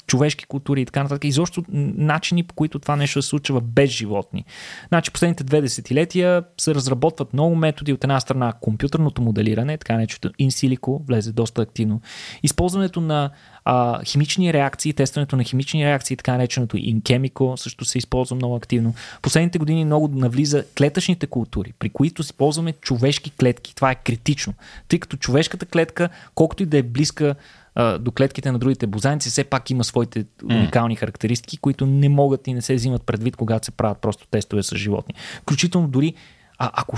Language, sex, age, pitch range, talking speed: Bulgarian, male, 20-39, 120-150 Hz, 170 wpm